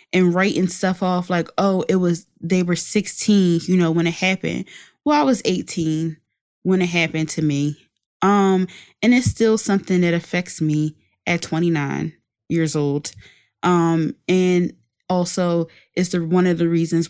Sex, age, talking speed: female, 20-39, 160 wpm